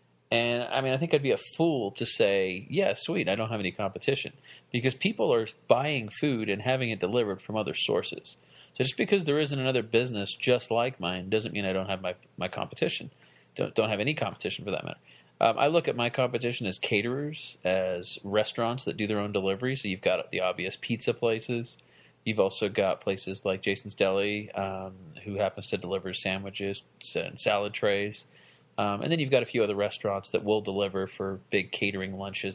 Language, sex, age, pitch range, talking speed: English, male, 40-59, 100-125 Hz, 205 wpm